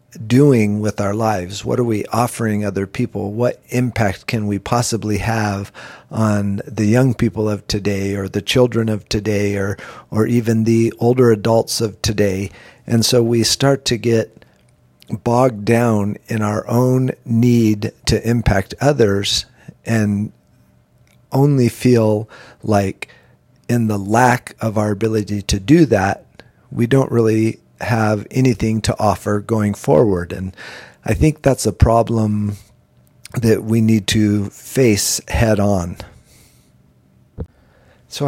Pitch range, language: 100-120 Hz, English